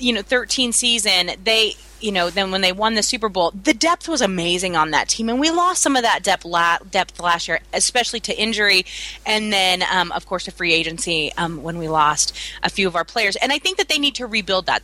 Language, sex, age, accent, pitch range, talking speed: English, female, 30-49, American, 180-250 Hz, 245 wpm